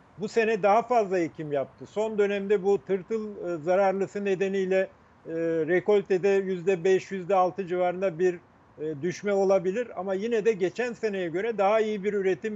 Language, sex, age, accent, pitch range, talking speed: Turkish, male, 50-69, native, 185-225 Hz, 145 wpm